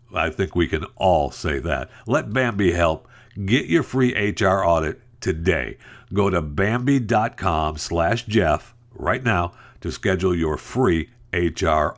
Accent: American